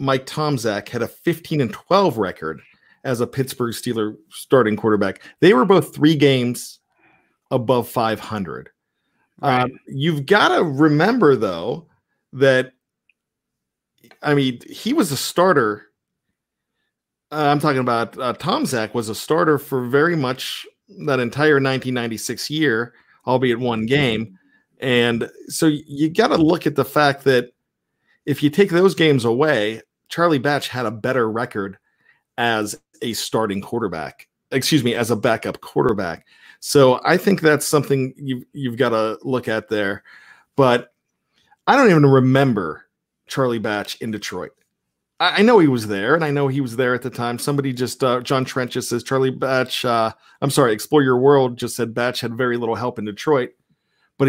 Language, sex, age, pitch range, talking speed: English, male, 40-59, 120-145 Hz, 160 wpm